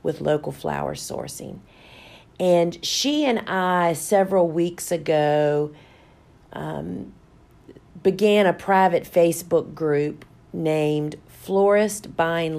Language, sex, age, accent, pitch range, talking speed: English, female, 40-59, American, 155-180 Hz, 95 wpm